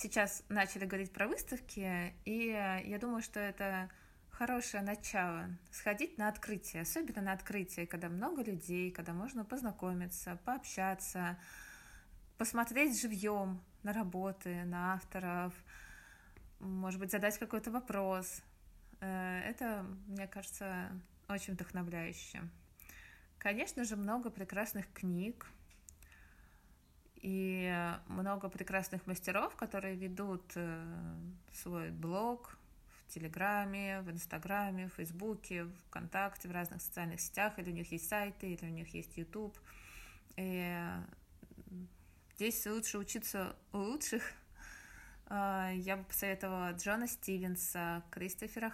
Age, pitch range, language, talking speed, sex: 20-39, 175-205 Hz, Russian, 105 wpm, female